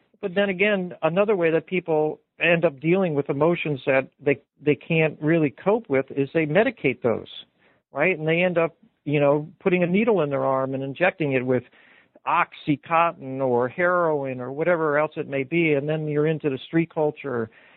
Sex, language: male, English